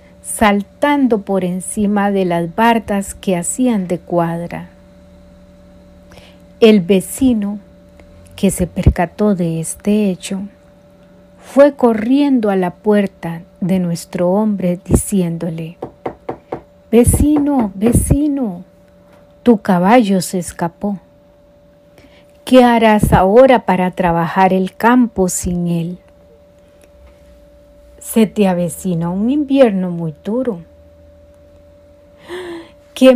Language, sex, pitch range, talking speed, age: Spanish, female, 170-245 Hz, 90 wpm, 40-59